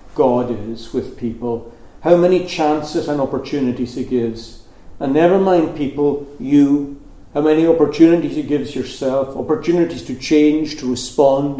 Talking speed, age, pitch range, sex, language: 140 wpm, 60-79, 115-150 Hz, male, English